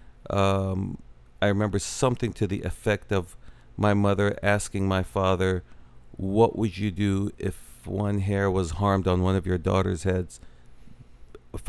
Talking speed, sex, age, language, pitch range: 150 wpm, male, 40-59, English, 90-105 Hz